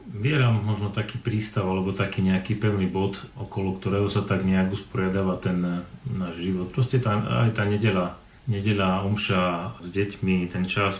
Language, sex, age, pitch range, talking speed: Slovak, male, 40-59, 95-110 Hz, 160 wpm